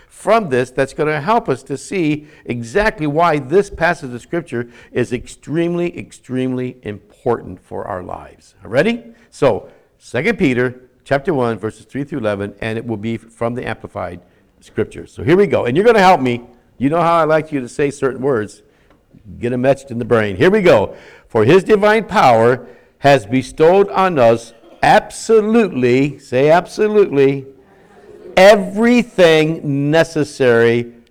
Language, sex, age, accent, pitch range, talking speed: English, male, 60-79, American, 110-150 Hz, 160 wpm